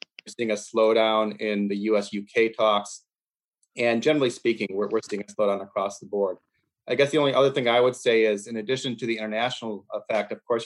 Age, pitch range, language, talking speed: 30-49, 105-120 Hz, English, 210 wpm